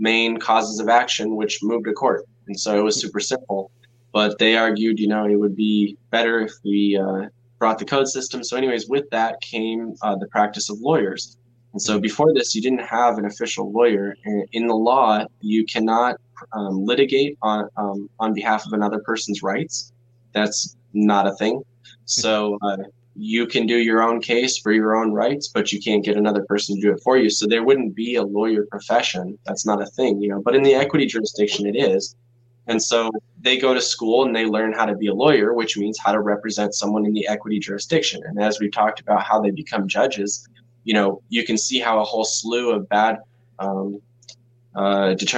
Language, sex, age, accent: English, male, 10-29, American